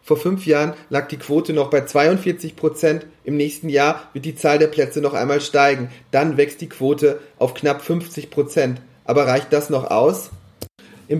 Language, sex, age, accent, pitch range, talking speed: German, male, 40-59, German, 140-165 Hz, 175 wpm